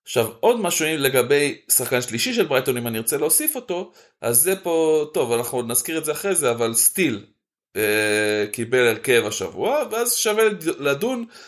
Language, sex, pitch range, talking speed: Hebrew, male, 110-165 Hz, 175 wpm